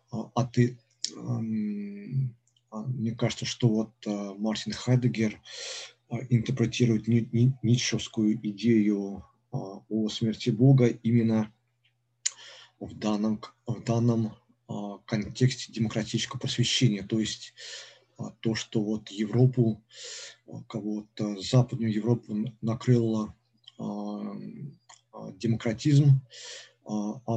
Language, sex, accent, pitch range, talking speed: Russian, male, native, 110-120 Hz, 75 wpm